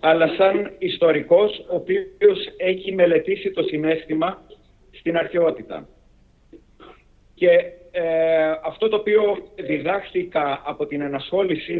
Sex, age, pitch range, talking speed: male, 50-69, 160-225 Hz, 95 wpm